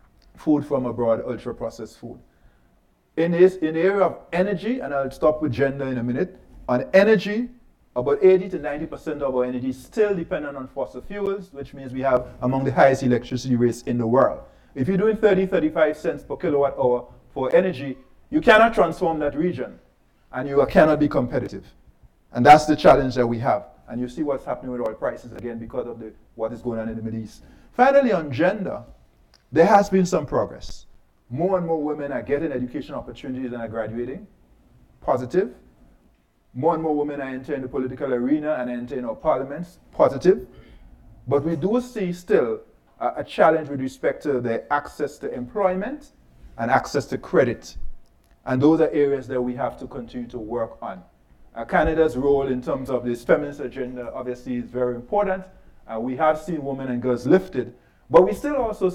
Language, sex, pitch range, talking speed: English, male, 125-170 Hz, 185 wpm